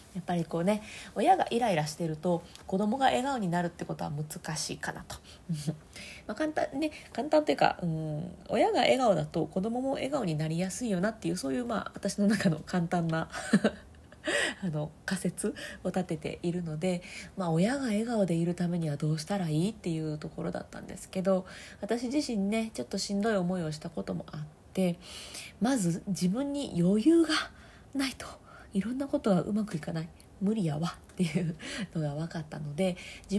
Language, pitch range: Japanese, 165-220 Hz